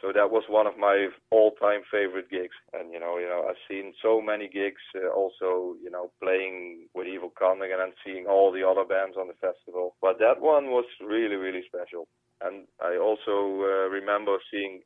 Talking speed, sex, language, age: 200 wpm, male, English, 30-49